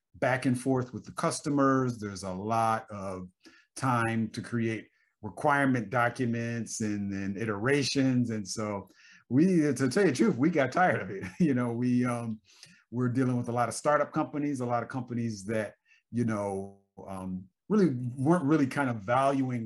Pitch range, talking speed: 105-130 Hz, 175 wpm